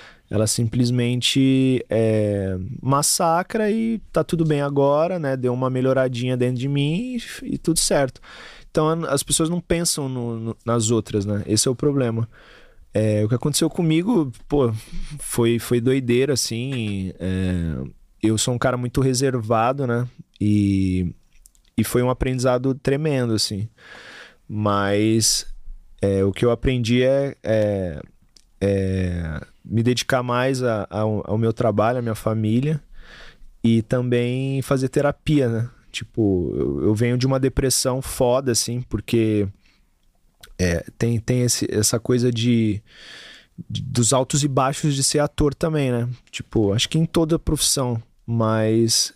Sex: male